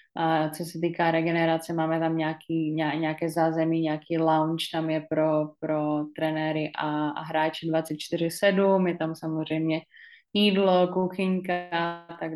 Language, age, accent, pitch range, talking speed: Czech, 20-39, native, 165-185 Hz, 135 wpm